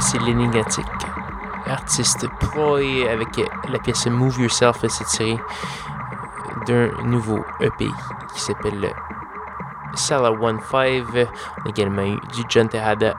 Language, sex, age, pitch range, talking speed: French, male, 20-39, 110-130 Hz, 125 wpm